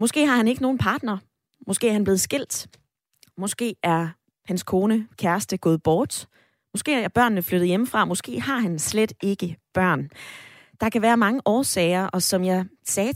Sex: female